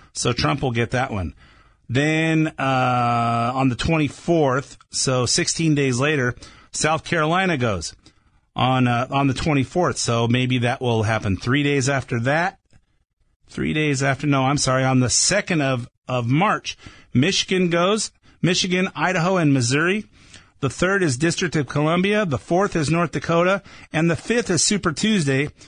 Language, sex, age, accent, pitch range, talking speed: English, male, 50-69, American, 120-170 Hz, 155 wpm